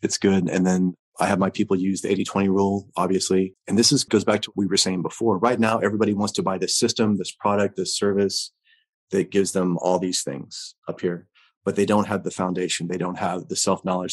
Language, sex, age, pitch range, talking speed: English, male, 30-49, 90-100 Hz, 235 wpm